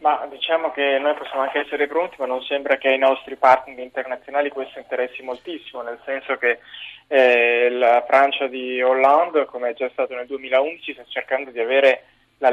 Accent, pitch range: native, 125-140 Hz